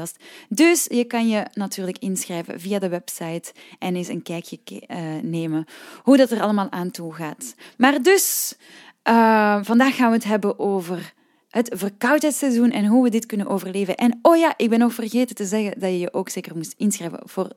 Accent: Dutch